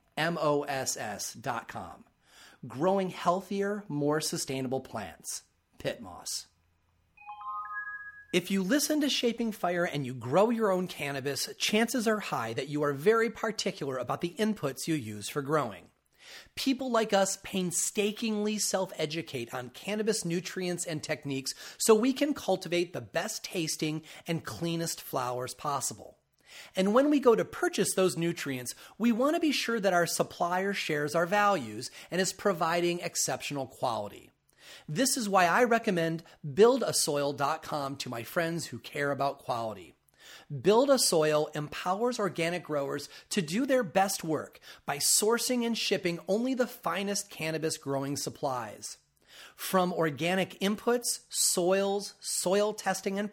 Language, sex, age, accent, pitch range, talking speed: English, male, 40-59, American, 150-210 Hz, 135 wpm